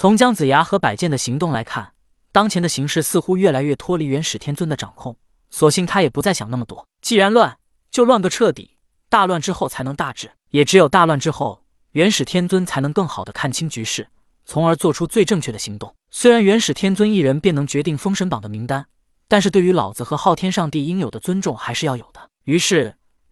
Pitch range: 135-190 Hz